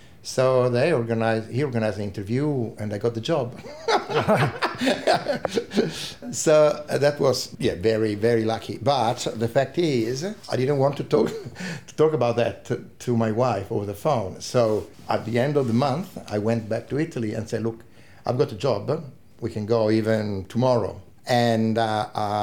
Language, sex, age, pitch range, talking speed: English, male, 60-79, 105-120 Hz, 175 wpm